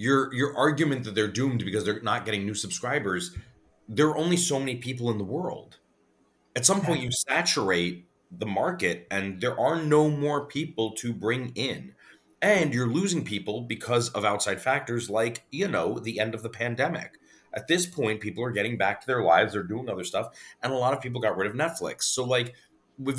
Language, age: English, 30-49